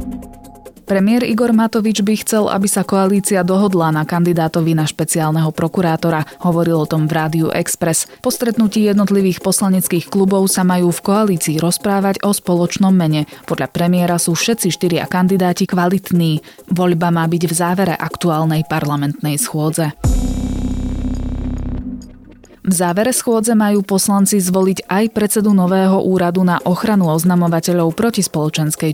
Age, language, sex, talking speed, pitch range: 20-39, Slovak, female, 130 wpm, 165-195 Hz